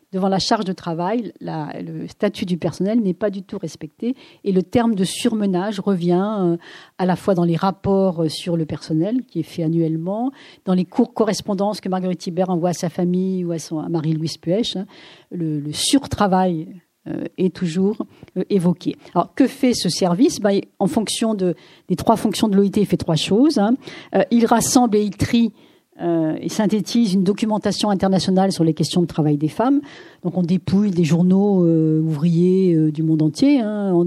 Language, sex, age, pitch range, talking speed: French, female, 40-59, 170-220 Hz, 180 wpm